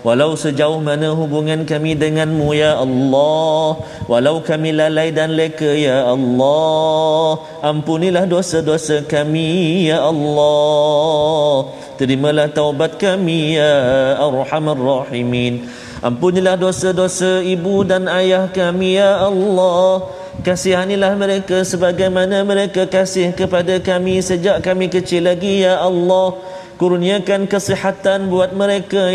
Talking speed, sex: 130 wpm, male